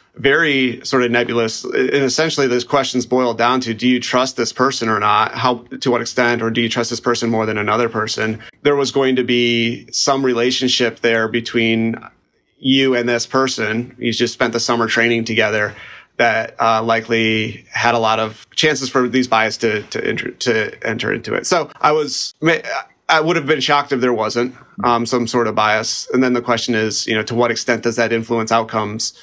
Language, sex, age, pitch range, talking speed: English, male, 30-49, 115-130 Hz, 205 wpm